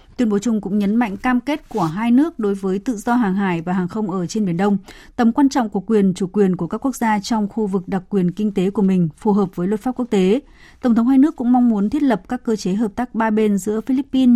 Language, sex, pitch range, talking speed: Vietnamese, female, 190-235 Hz, 290 wpm